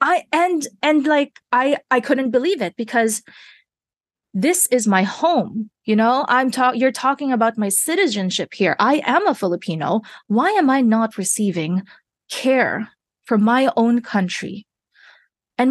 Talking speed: 150 wpm